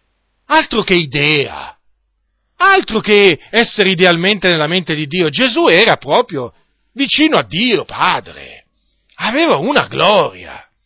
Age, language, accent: 40-59, Italian, native